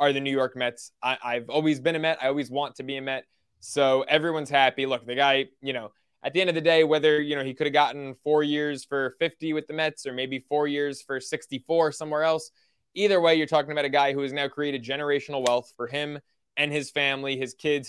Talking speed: 245 wpm